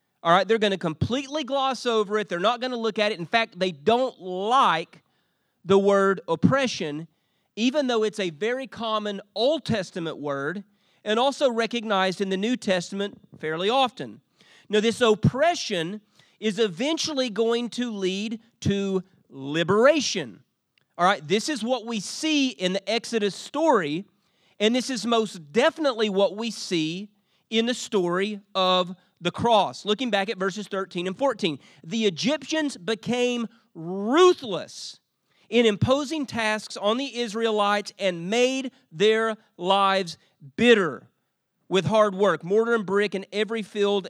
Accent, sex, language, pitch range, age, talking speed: American, male, English, 185-235 Hz, 40-59, 145 wpm